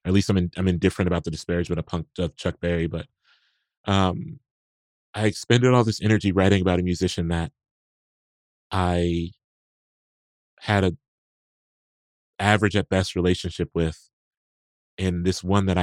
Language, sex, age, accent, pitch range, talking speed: English, male, 30-49, American, 85-100 Hz, 145 wpm